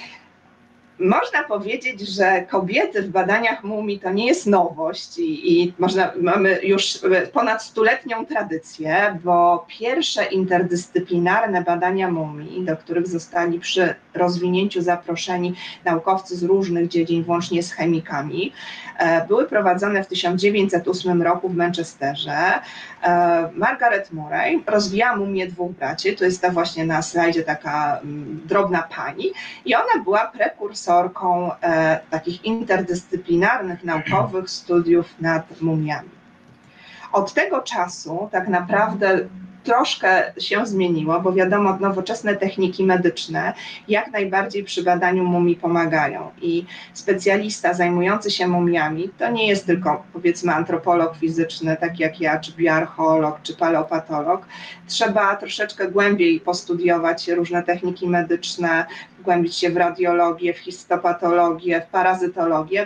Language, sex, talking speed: Polish, female, 115 wpm